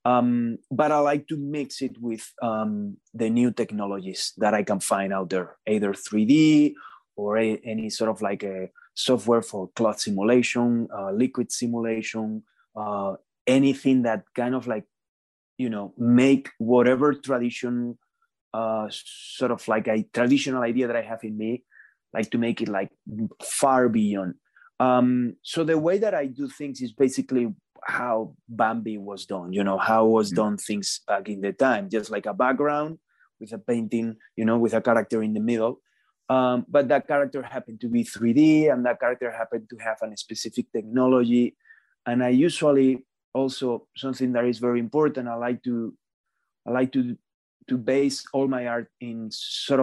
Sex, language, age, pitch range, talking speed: male, English, 30-49, 110-130 Hz, 170 wpm